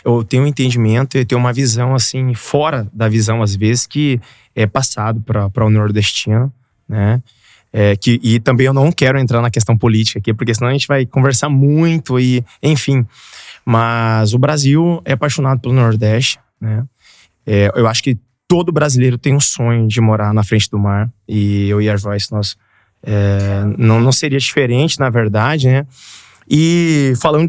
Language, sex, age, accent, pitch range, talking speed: Portuguese, male, 20-39, Brazilian, 110-135 Hz, 170 wpm